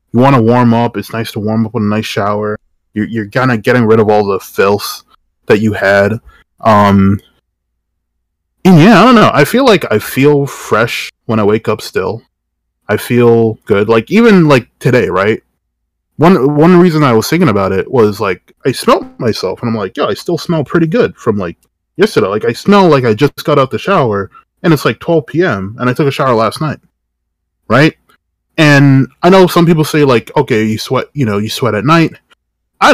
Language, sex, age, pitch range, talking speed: English, male, 20-39, 110-140 Hz, 210 wpm